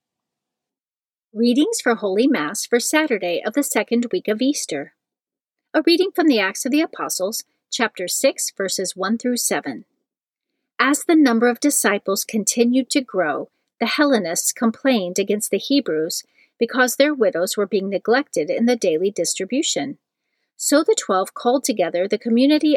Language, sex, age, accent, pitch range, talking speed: English, female, 40-59, American, 205-275 Hz, 150 wpm